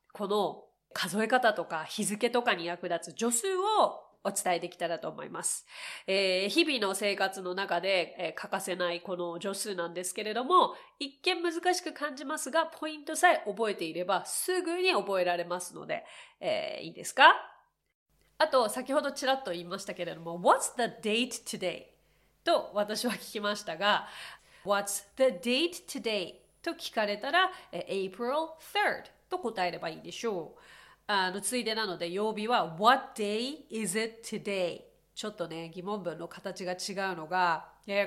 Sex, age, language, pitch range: female, 30-49, Japanese, 180-265 Hz